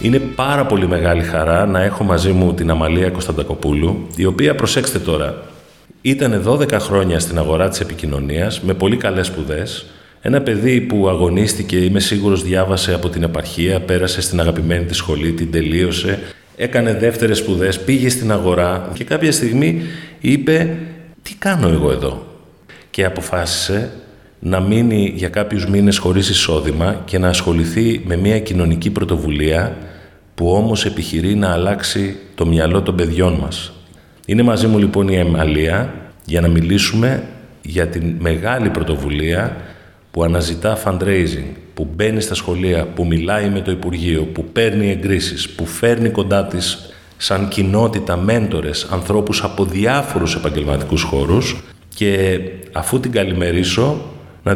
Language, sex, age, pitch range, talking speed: Greek, male, 30-49, 85-105 Hz, 145 wpm